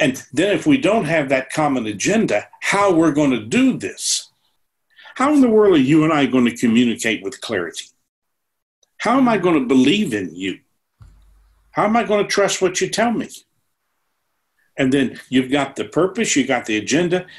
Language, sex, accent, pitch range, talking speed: English, male, American, 130-210 Hz, 195 wpm